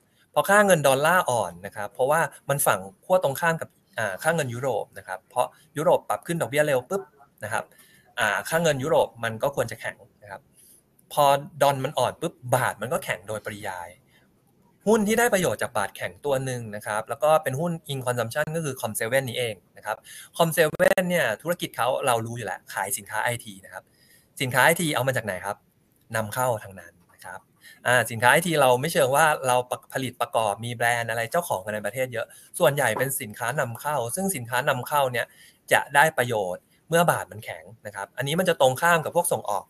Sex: male